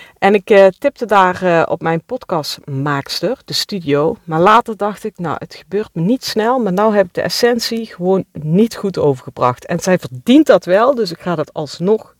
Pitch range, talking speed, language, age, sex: 160-210 Hz, 200 wpm, Dutch, 40-59, female